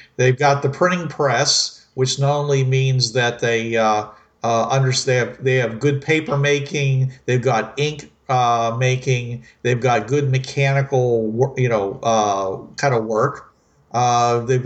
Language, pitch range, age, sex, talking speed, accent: English, 120-140 Hz, 50-69, male, 155 wpm, American